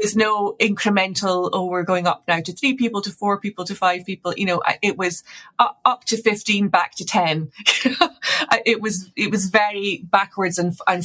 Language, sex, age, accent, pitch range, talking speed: English, female, 30-49, British, 175-205 Hz, 195 wpm